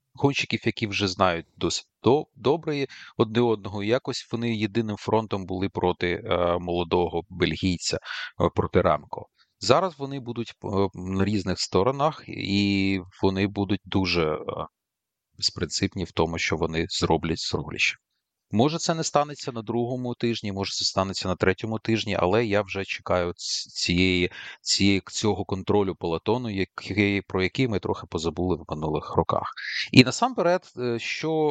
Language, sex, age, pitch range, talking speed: Ukrainian, male, 30-49, 95-120 Hz, 130 wpm